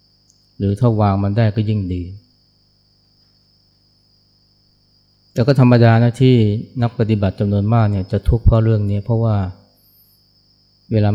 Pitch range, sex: 100-110 Hz, male